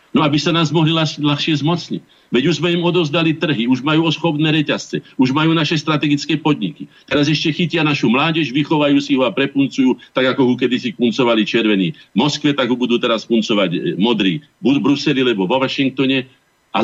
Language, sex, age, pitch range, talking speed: Slovak, male, 50-69, 125-160 Hz, 195 wpm